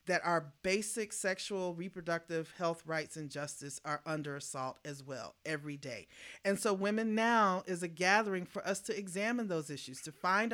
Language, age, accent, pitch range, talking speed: English, 40-59, American, 155-210 Hz, 175 wpm